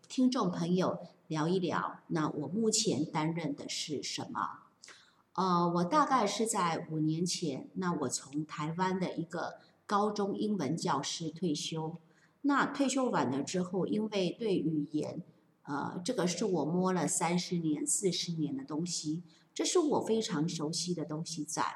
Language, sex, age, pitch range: Chinese, female, 50-69, 155-205 Hz